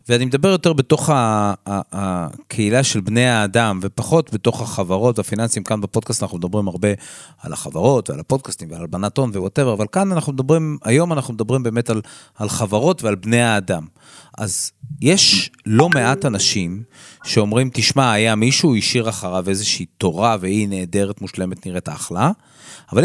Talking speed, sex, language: 150 wpm, male, Hebrew